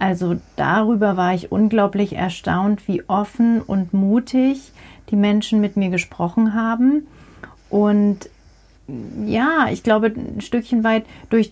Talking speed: 125 wpm